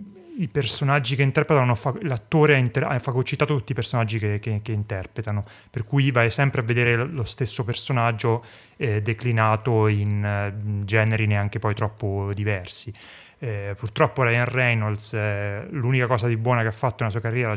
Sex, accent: male, native